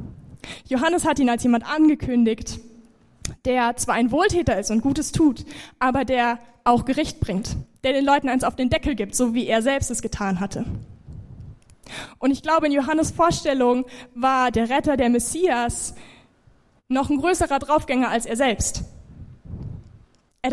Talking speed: 155 wpm